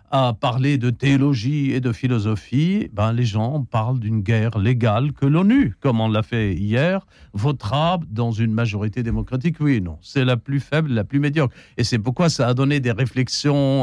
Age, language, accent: 50-69, French, French